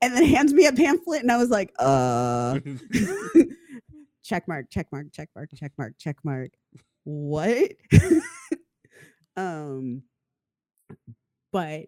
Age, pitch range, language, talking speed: 20-39, 145-215 Hz, English, 120 wpm